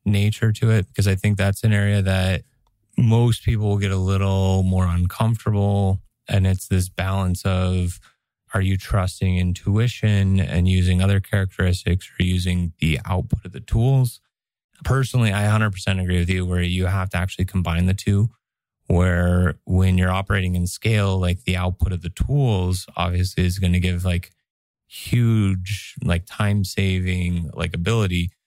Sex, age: male, 20-39